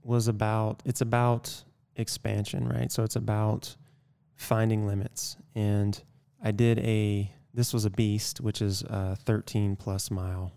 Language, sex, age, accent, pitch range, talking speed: English, male, 20-39, American, 105-125 Hz, 140 wpm